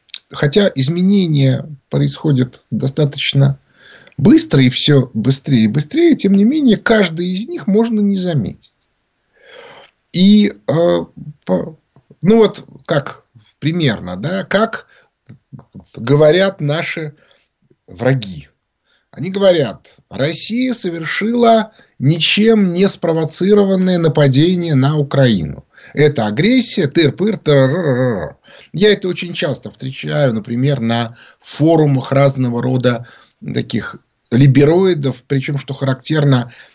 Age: 30-49